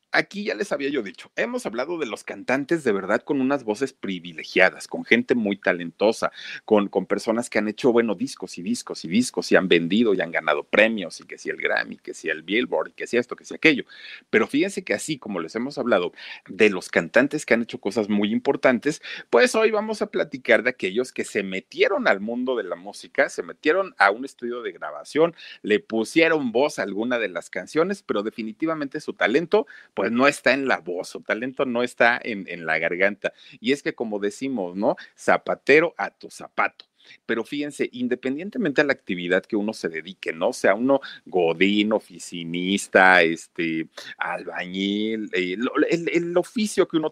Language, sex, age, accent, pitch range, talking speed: Spanish, male, 40-59, Mexican, 105-170 Hz, 195 wpm